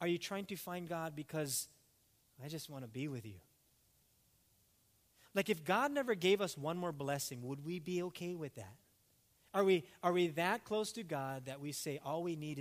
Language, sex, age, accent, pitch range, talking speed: English, male, 30-49, American, 120-175 Hz, 205 wpm